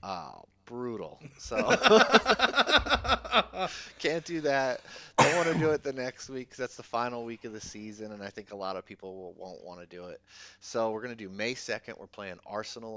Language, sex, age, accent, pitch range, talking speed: English, male, 30-49, American, 90-110 Hz, 210 wpm